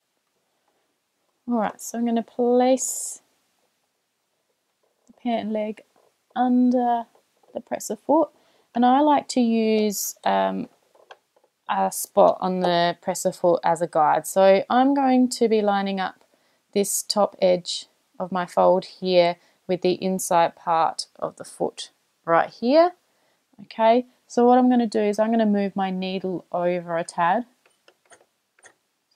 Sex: female